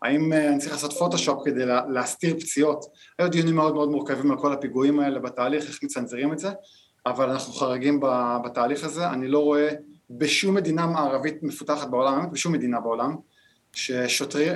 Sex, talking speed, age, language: male, 160 wpm, 20-39, Hebrew